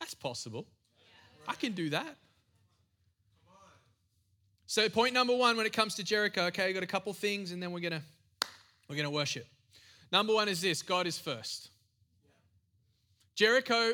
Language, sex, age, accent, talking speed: English, male, 20-39, Australian, 155 wpm